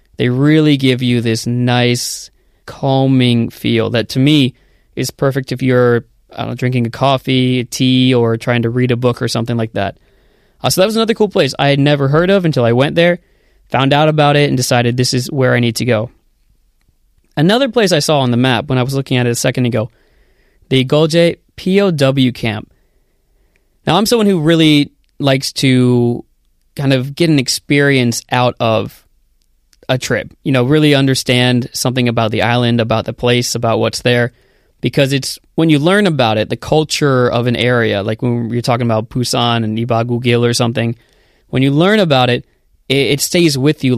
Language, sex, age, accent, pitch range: Korean, male, 20-39, American, 120-145 Hz